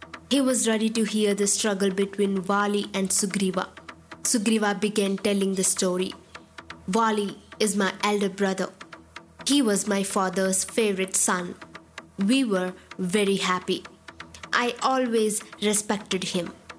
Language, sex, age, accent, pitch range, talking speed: English, female, 20-39, Indian, 195-240 Hz, 125 wpm